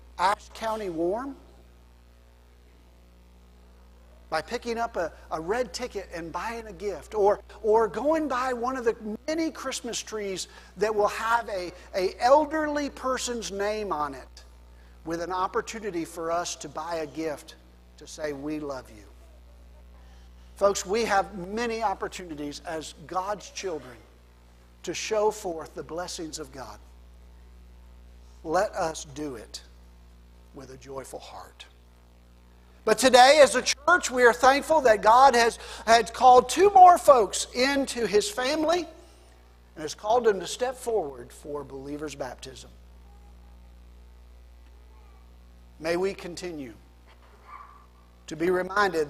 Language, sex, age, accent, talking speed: English, male, 50-69, American, 130 wpm